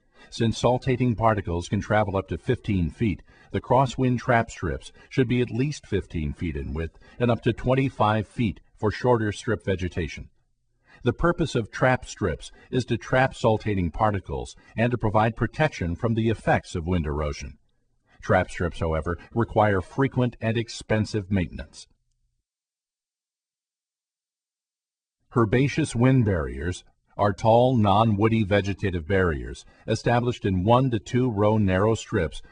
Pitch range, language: 90-120 Hz, English